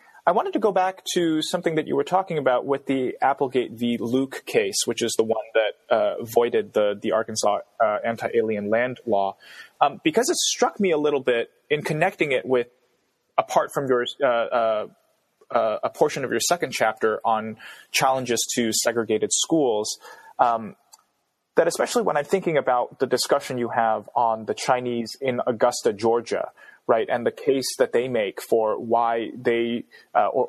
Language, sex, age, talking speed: English, male, 20-39, 175 wpm